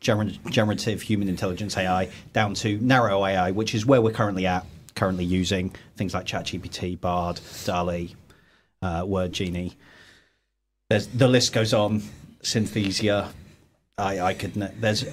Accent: British